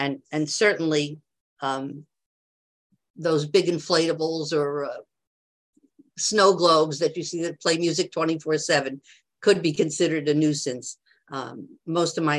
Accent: American